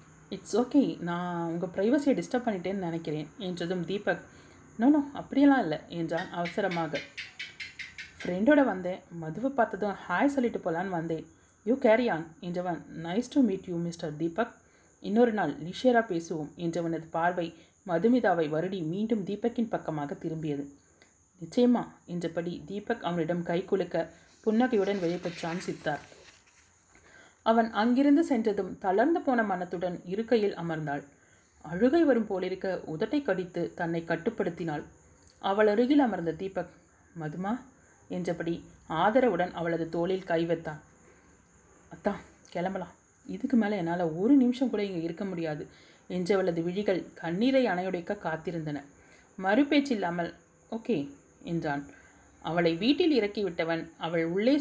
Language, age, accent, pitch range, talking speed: Tamil, 30-49, native, 165-225 Hz, 120 wpm